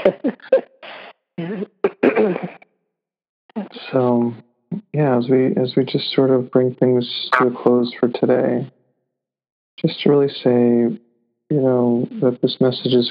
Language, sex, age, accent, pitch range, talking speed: English, male, 40-59, American, 120-130 Hz, 120 wpm